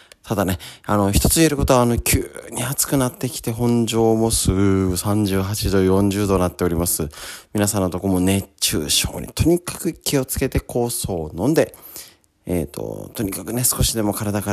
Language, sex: Japanese, male